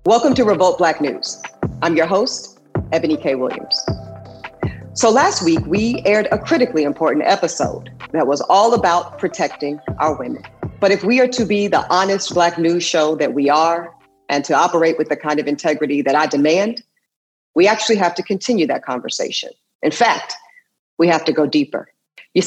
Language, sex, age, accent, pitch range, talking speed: English, female, 40-59, American, 150-200 Hz, 180 wpm